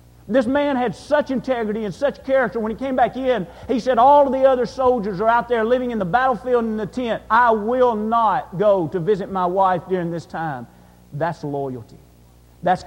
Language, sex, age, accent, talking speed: English, male, 50-69, American, 210 wpm